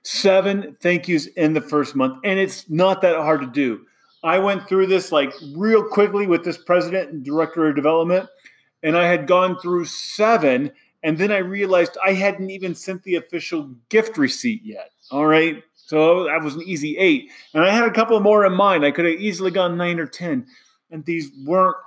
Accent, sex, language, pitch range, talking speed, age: American, male, English, 150-215 Hz, 205 wpm, 30-49